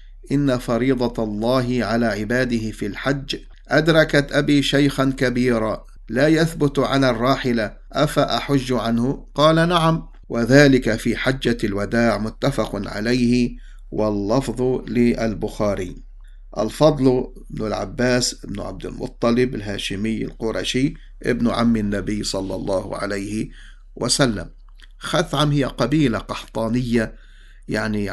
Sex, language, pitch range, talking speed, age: male, English, 110-135 Hz, 100 wpm, 50-69